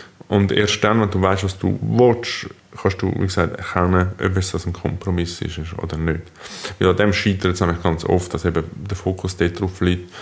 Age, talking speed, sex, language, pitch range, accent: 20-39, 205 wpm, male, German, 90-105 Hz, Austrian